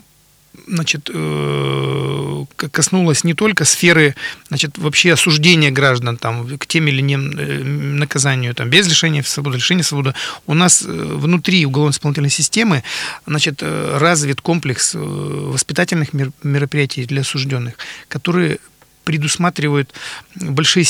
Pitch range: 140-175 Hz